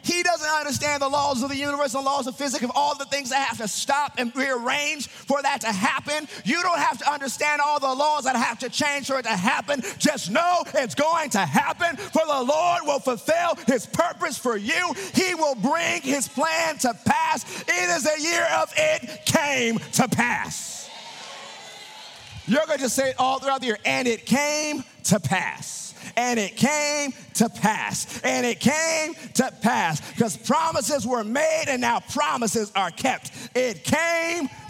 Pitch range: 245-295 Hz